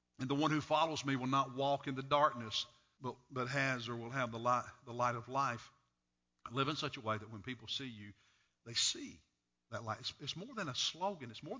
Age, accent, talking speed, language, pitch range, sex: 50-69, American, 240 wpm, English, 115-140 Hz, male